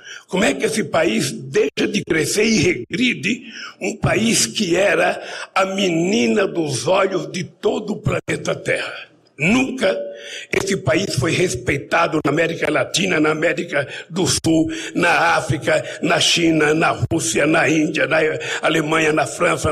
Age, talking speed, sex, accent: 60-79, 145 wpm, male, Brazilian